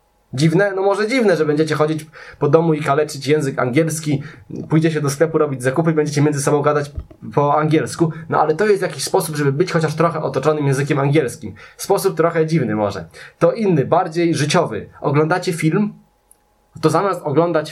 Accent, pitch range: native, 145-170 Hz